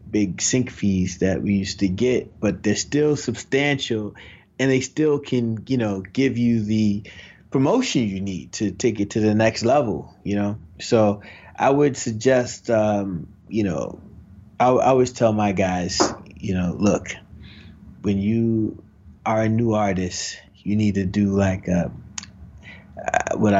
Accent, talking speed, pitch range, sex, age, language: American, 160 wpm, 95-120 Hz, male, 30-49, English